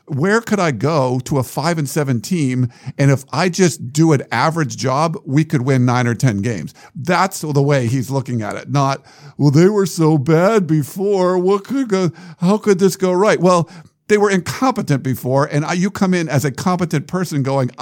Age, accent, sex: 50-69, American, male